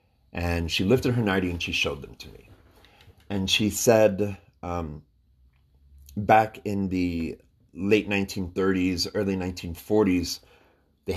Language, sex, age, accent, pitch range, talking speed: English, male, 30-49, American, 80-100 Hz, 125 wpm